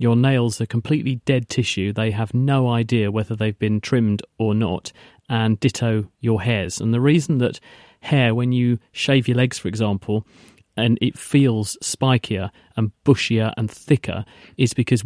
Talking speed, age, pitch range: 165 wpm, 40-59, 110-130 Hz